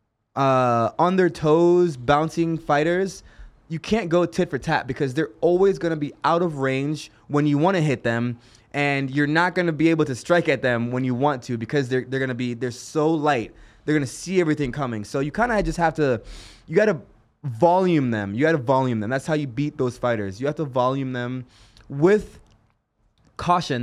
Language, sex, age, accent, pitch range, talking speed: English, male, 20-39, American, 125-165 Hz, 220 wpm